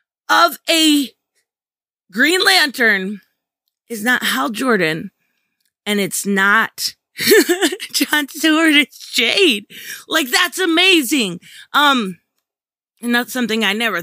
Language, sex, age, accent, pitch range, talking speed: English, female, 20-39, American, 205-285 Hz, 105 wpm